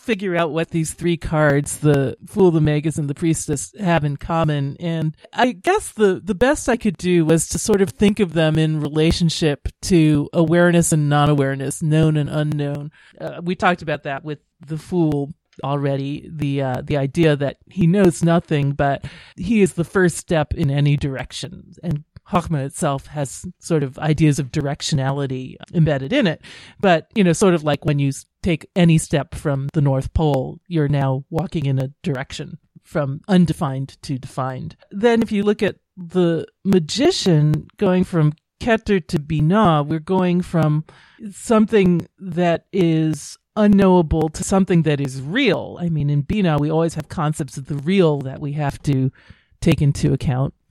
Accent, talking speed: American, 175 wpm